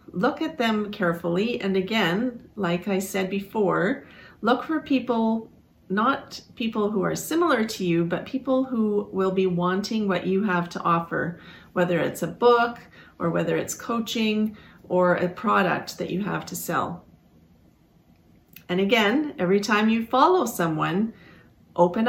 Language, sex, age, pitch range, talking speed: English, female, 40-59, 180-225 Hz, 150 wpm